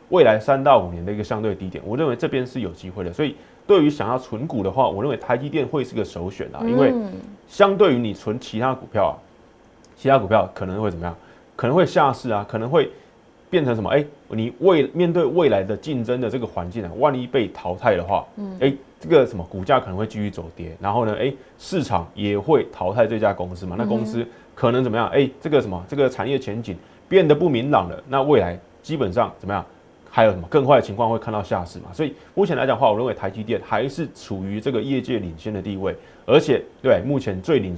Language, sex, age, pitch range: Chinese, male, 20-39, 100-135 Hz